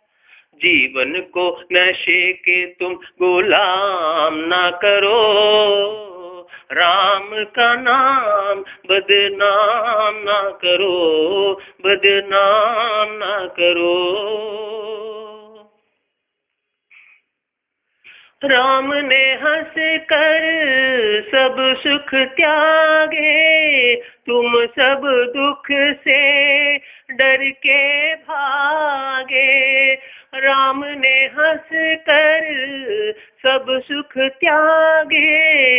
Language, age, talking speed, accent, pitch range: English, 30-49, 60 wpm, Indian, 210-285 Hz